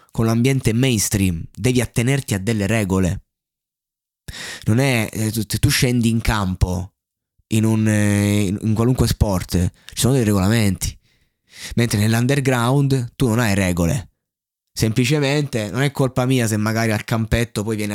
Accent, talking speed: native, 145 wpm